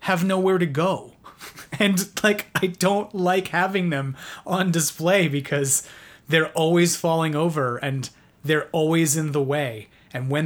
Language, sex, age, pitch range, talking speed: English, male, 30-49, 145-190 Hz, 150 wpm